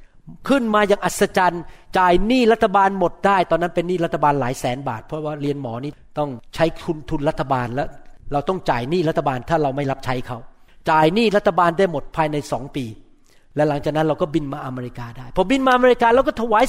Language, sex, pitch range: Thai, male, 145-195 Hz